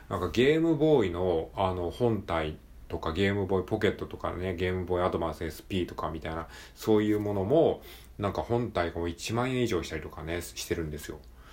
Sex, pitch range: male, 90-130 Hz